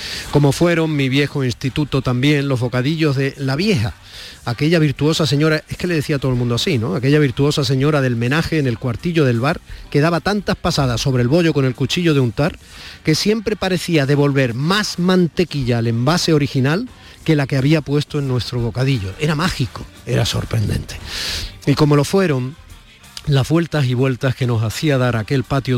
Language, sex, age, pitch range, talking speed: Spanish, male, 40-59, 115-145 Hz, 190 wpm